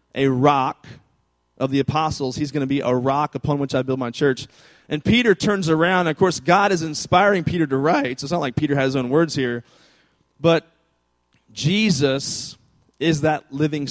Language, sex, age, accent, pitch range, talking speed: English, male, 30-49, American, 120-165 Hz, 190 wpm